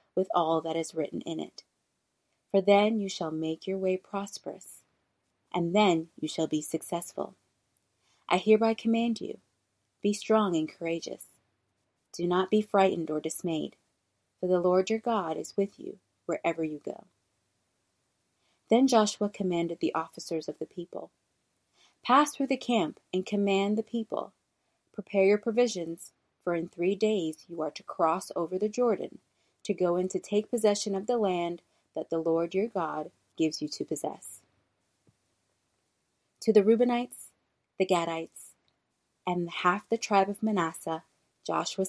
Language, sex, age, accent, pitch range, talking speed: English, female, 30-49, American, 165-210 Hz, 150 wpm